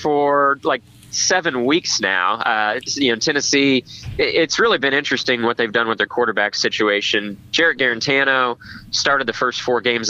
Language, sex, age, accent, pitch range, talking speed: English, male, 20-39, American, 115-140 Hz, 160 wpm